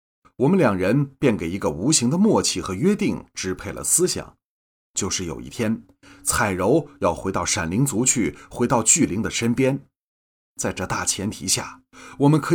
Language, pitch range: Chinese, 95-135 Hz